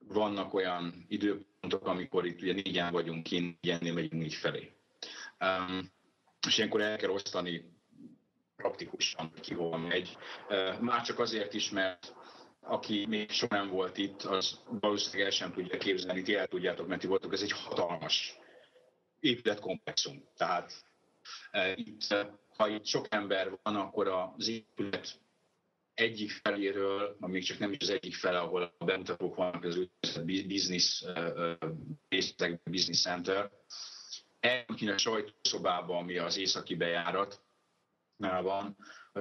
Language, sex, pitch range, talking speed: Hungarian, male, 85-105 Hz, 130 wpm